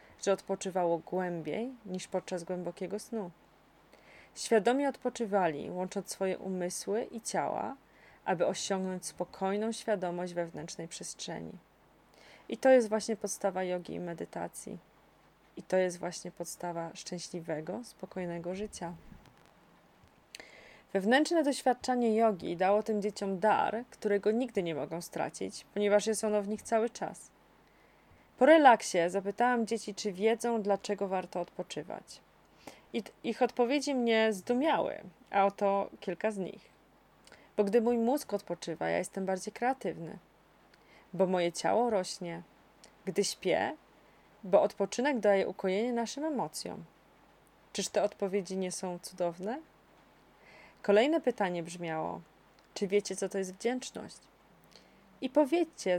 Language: Polish